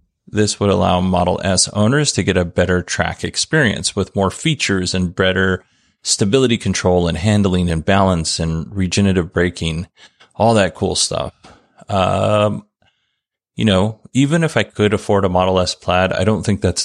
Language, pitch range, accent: English, 90-110 Hz, American